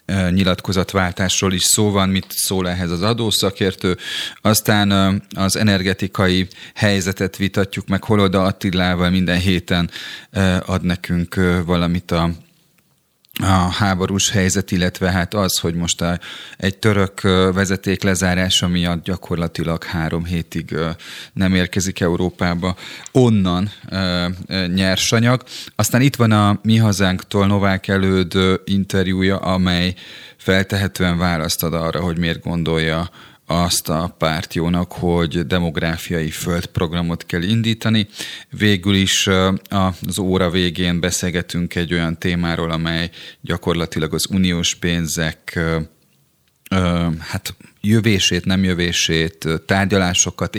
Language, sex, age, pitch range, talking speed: Hungarian, male, 30-49, 85-95 Hz, 105 wpm